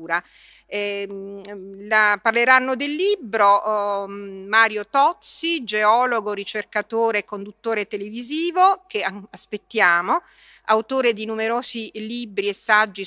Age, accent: 40-59, native